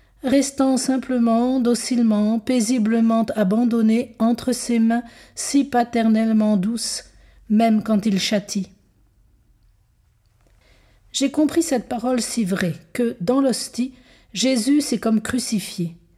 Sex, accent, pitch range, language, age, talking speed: female, French, 205-240 Hz, French, 50-69, 105 wpm